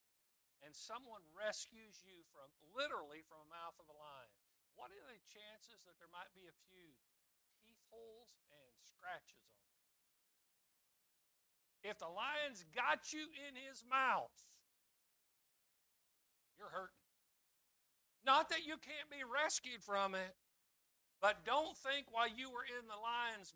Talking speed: 140 wpm